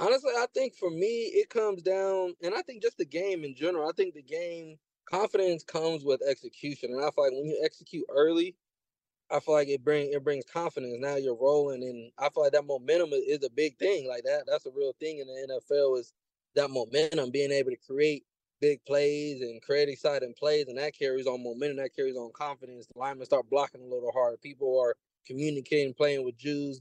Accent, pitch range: American, 135-165 Hz